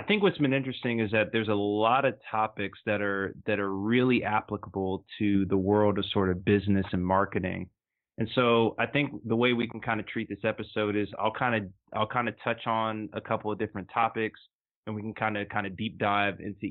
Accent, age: American, 20-39